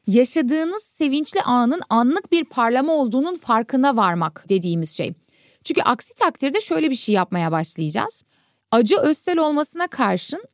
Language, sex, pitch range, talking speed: Turkish, female, 215-300 Hz, 130 wpm